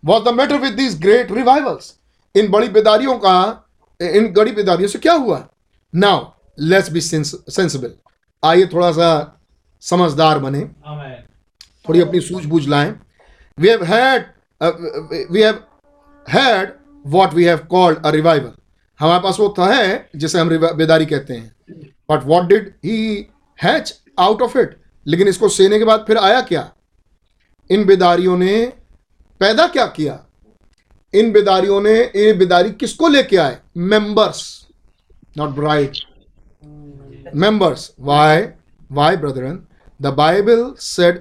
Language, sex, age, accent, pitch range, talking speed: Hindi, male, 50-69, native, 145-210 Hz, 250 wpm